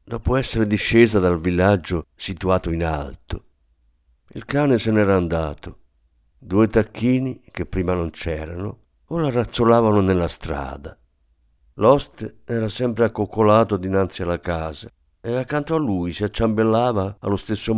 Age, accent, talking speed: 50-69, native, 130 wpm